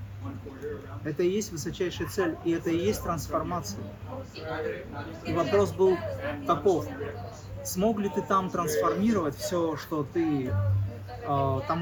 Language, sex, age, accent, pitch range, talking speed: Russian, male, 30-49, native, 120-190 Hz, 120 wpm